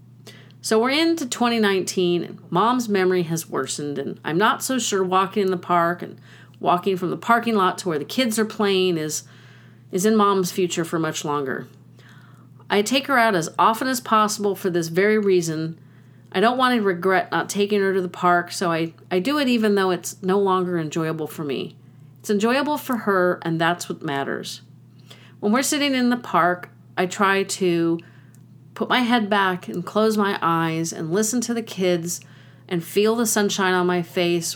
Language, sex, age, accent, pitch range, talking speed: English, female, 40-59, American, 165-210 Hz, 195 wpm